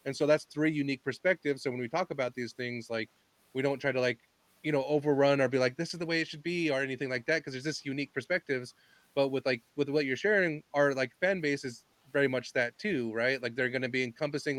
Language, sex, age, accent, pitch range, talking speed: English, male, 30-49, American, 125-150 Hz, 265 wpm